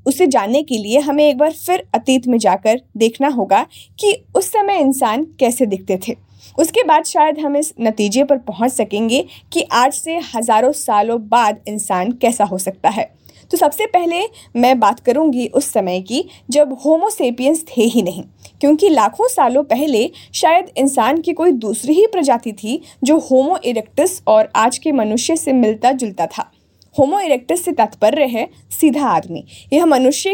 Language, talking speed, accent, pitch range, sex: Hindi, 170 wpm, native, 225-305 Hz, female